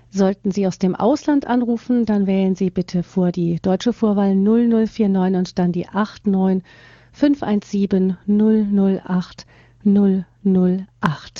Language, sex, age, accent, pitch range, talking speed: German, female, 40-59, German, 195-235 Hz, 105 wpm